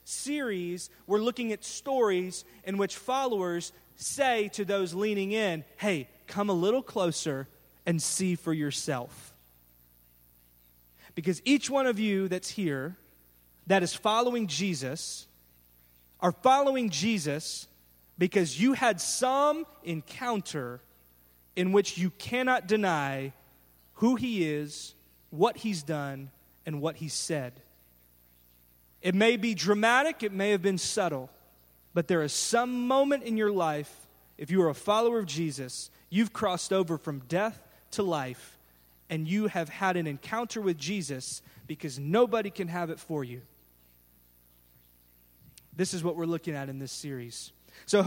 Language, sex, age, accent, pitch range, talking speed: English, male, 30-49, American, 135-215 Hz, 140 wpm